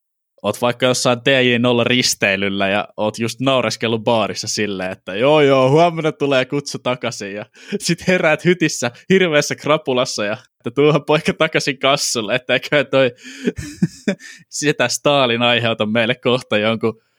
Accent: native